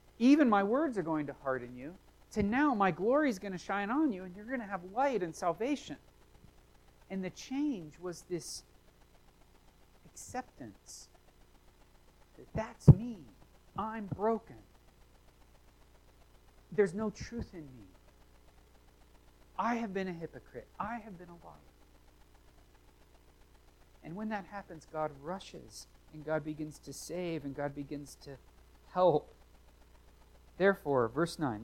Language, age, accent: English, 40-59, American